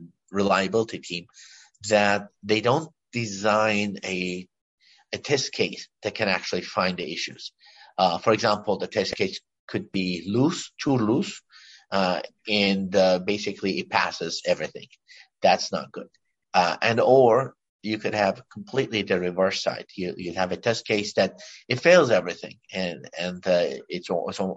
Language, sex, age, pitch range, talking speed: English, male, 50-69, 95-105 Hz, 150 wpm